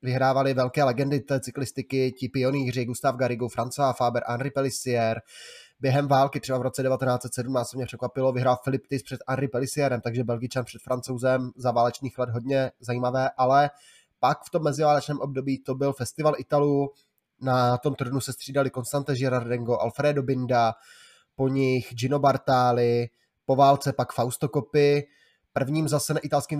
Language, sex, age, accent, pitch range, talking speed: Czech, male, 20-39, native, 125-135 Hz, 155 wpm